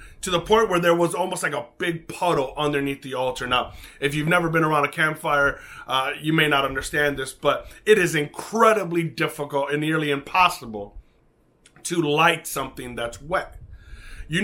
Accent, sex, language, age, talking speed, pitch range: American, male, English, 30-49, 175 wpm, 140-180 Hz